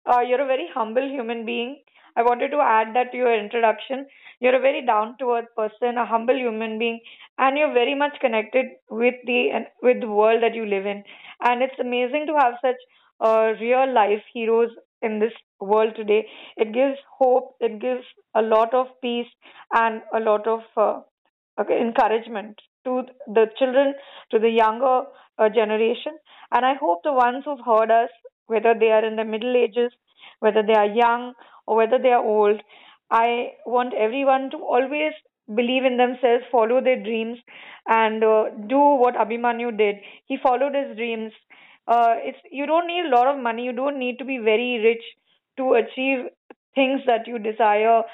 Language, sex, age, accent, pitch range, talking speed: English, female, 20-39, Indian, 225-260 Hz, 175 wpm